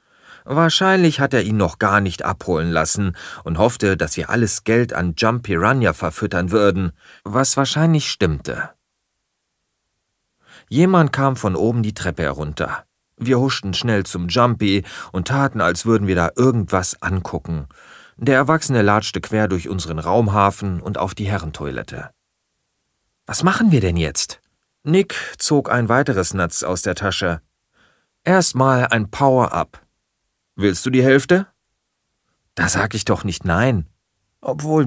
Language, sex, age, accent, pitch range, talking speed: German, male, 40-59, German, 90-130 Hz, 140 wpm